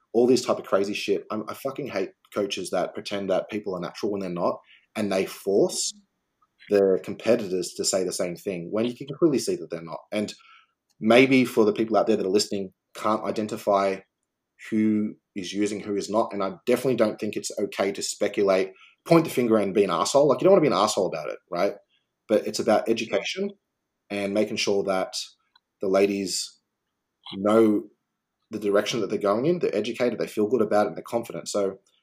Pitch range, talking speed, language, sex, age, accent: 100-120 Hz, 210 wpm, English, male, 20-39, Australian